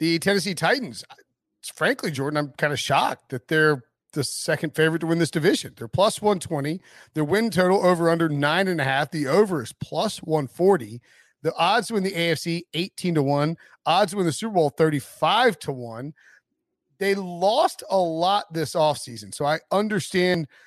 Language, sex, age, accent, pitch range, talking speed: English, male, 40-59, American, 135-170 Hz, 185 wpm